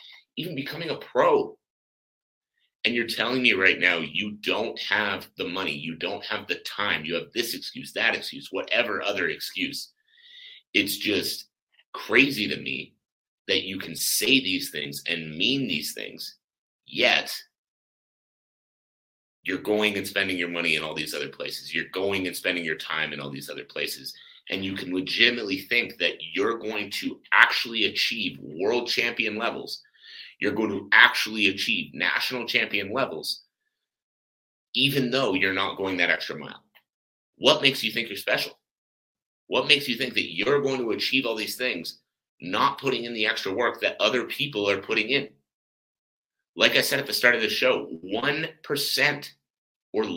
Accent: American